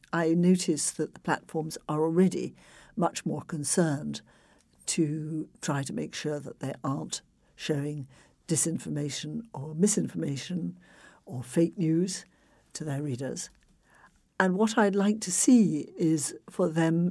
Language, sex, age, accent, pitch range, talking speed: English, female, 60-79, British, 145-190 Hz, 130 wpm